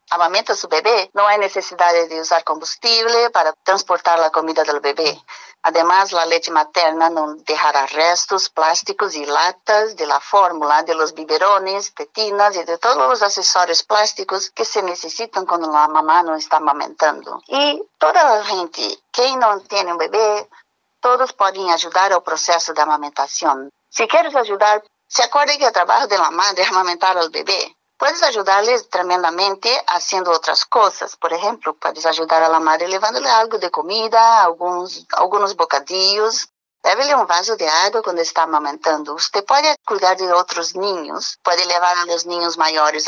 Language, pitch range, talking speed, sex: English, 165-215 Hz, 165 wpm, female